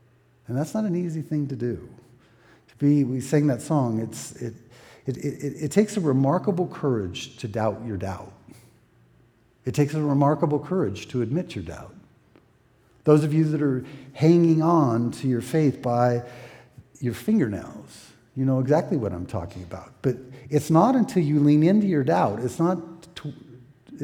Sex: male